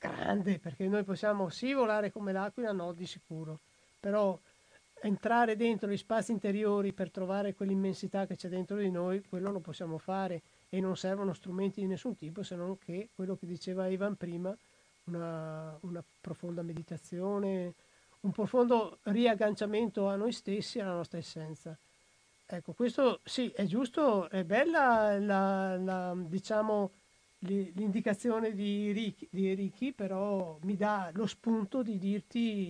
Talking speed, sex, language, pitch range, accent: 145 wpm, male, Italian, 180-210 Hz, native